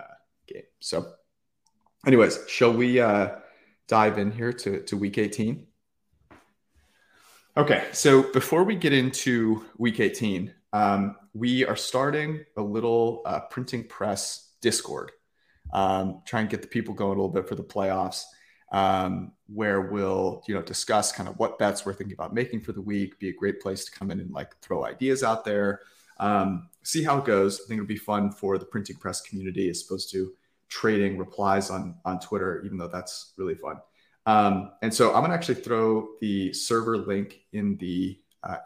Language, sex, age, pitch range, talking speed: English, male, 30-49, 95-115 Hz, 180 wpm